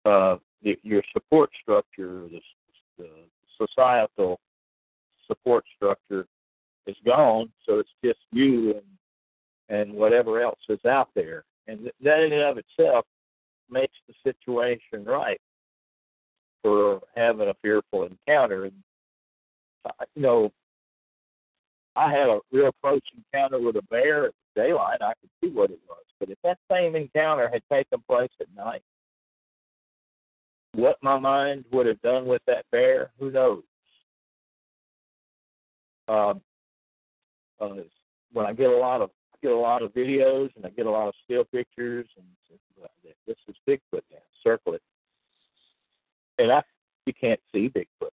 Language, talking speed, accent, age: English, 140 wpm, American, 50-69